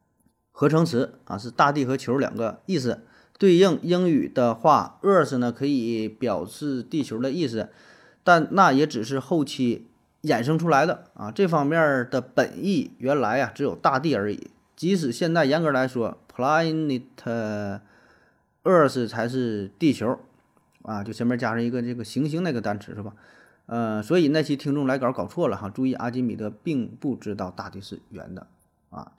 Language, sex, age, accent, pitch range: Chinese, male, 30-49, native, 105-135 Hz